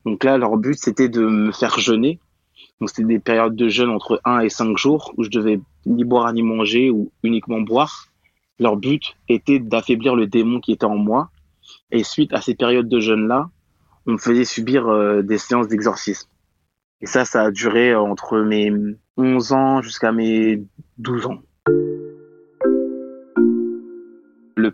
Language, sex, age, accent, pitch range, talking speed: French, male, 20-39, French, 110-125 Hz, 165 wpm